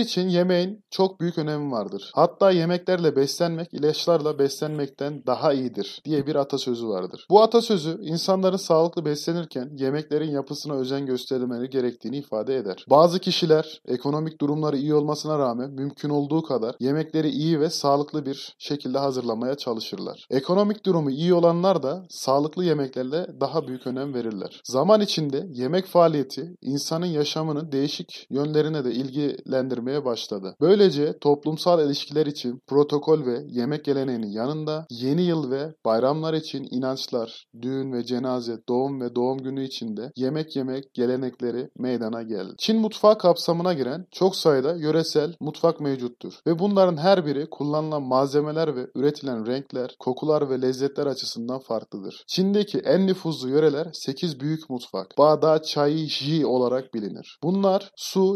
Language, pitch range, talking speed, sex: Turkish, 130-170 Hz, 140 wpm, male